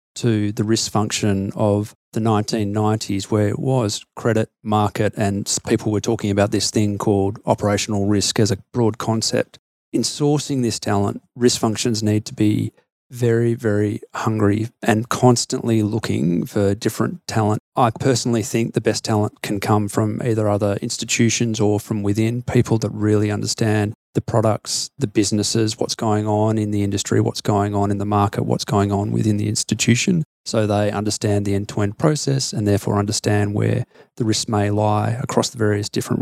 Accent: Australian